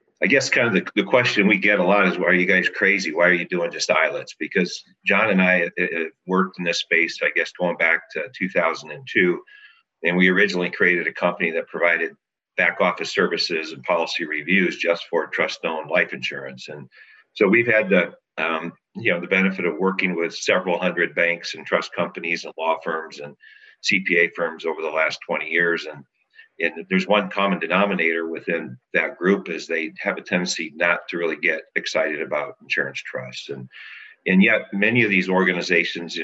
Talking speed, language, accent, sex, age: 195 wpm, English, American, male, 50-69